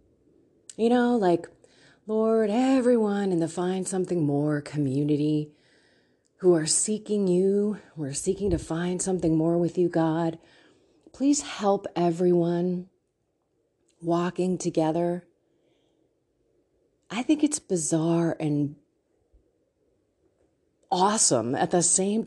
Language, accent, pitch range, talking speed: English, American, 165-245 Hz, 105 wpm